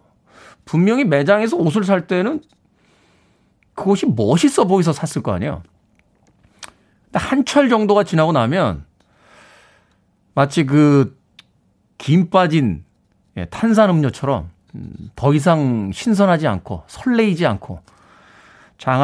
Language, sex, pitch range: Korean, male, 115-185 Hz